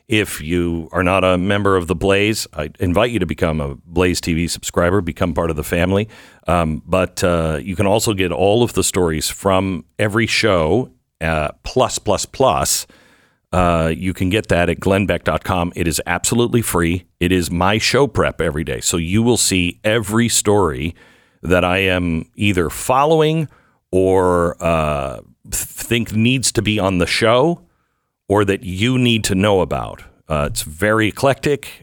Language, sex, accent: English, male, American